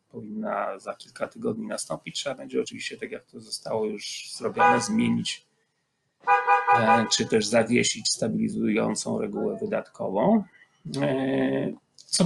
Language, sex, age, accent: Polish, male, 30-49, native